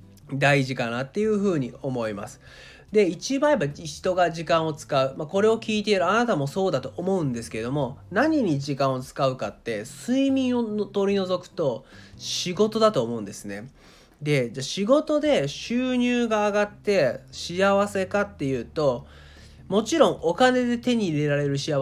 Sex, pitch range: male, 130-215 Hz